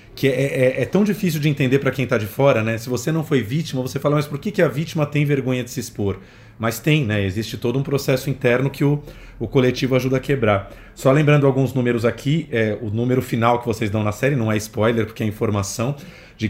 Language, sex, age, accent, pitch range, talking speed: Portuguese, male, 40-59, Brazilian, 110-145 Hz, 245 wpm